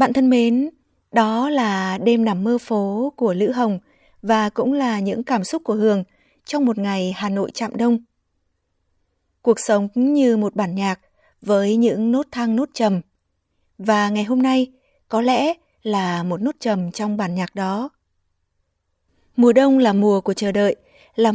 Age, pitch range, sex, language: 20-39, 195-250 Hz, female, Vietnamese